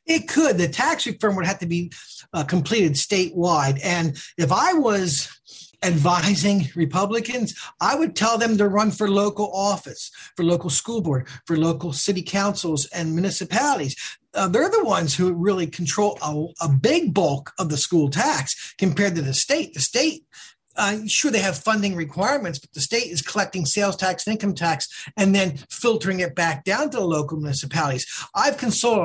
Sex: male